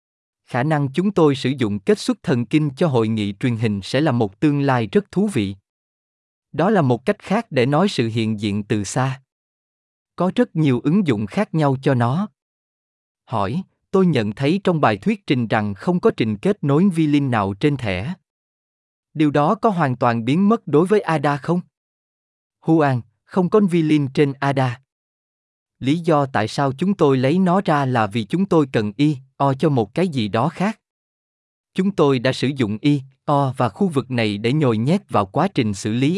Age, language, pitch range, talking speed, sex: 20-39, Vietnamese, 120-165 Hz, 200 wpm, male